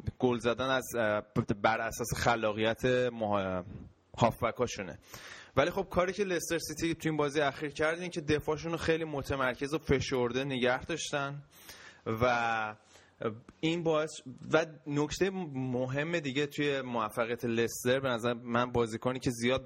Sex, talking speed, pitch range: male, 135 wpm, 115-145 Hz